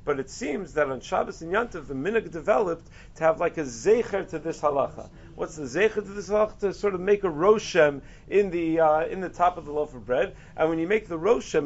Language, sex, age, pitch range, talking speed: English, male, 40-59, 150-190 Hz, 245 wpm